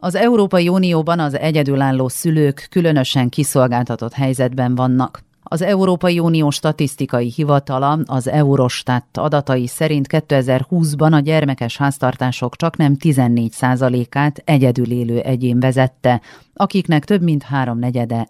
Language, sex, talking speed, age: Hungarian, female, 110 wpm, 40-59